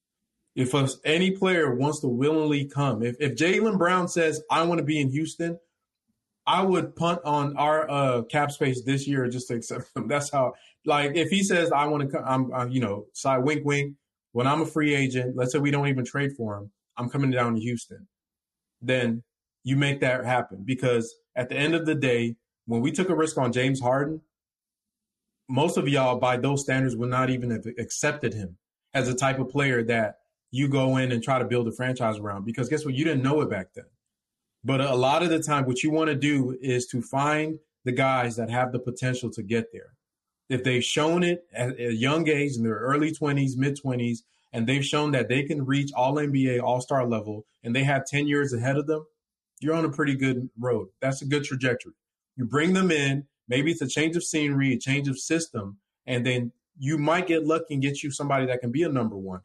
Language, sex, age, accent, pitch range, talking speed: English, male, 20-39, American, 125-150 Hz, 220 wpm